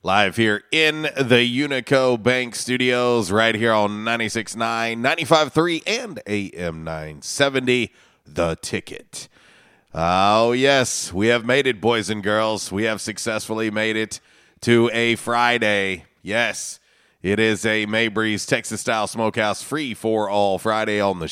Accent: American